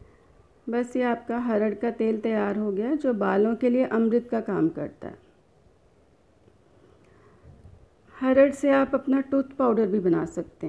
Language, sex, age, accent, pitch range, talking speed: Hindi, female, 50-69, native, 205-245 Hz, 150 wpm